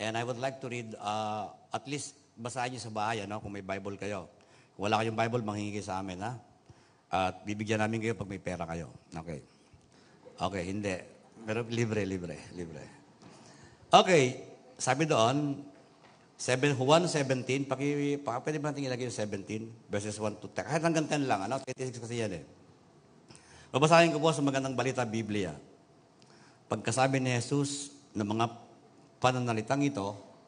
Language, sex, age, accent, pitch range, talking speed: Filipino, male, 50-69, native, 105-140 Hz, 160 wpm